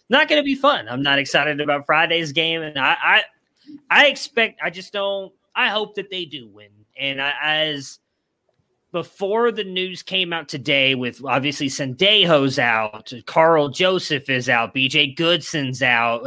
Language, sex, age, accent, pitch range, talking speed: English, male, 20-39, American, 130-170 Hz, 160 wpm